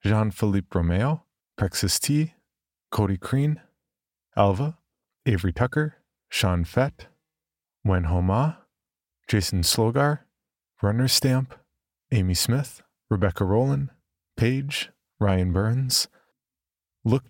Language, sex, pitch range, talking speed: English, male, 90-125 Hz, 85 wpm